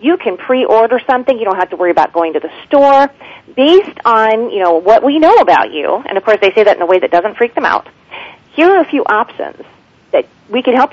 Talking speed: 255 wpm